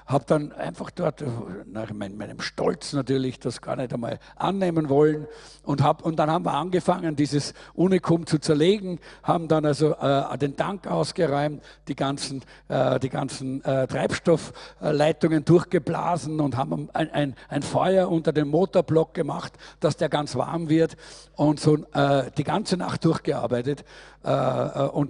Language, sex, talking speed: German, male, 155 wpm